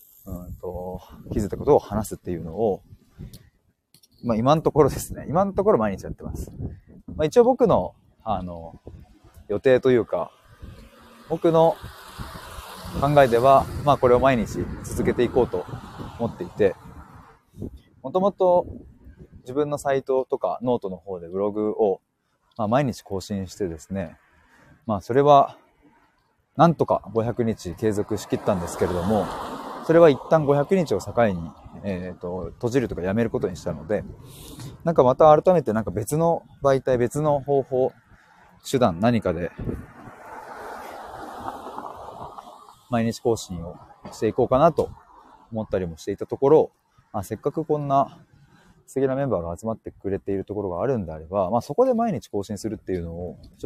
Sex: male